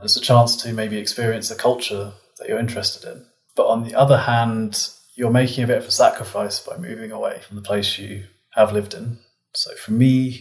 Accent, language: British, English